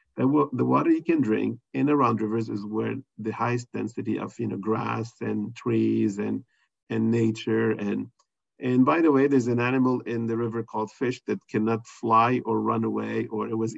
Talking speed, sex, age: 200 wpm, male, 40-59